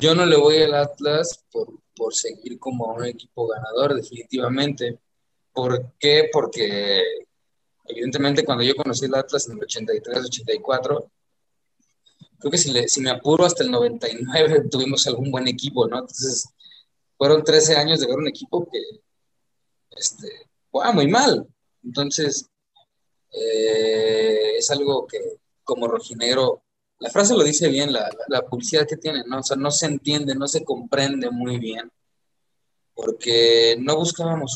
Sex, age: male, 20-39